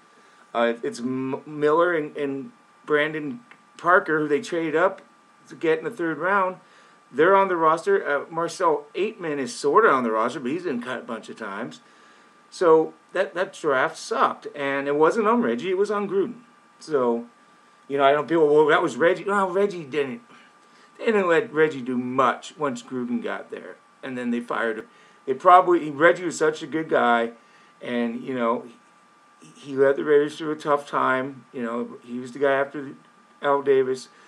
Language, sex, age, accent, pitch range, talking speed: English, male, 40-59, American, 125-175 Hz, 190 wpm